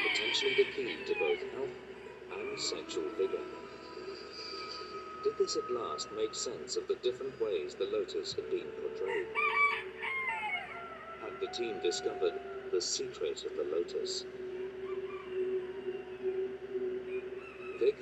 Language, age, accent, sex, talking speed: English, 50-69, British, male, 115 wpm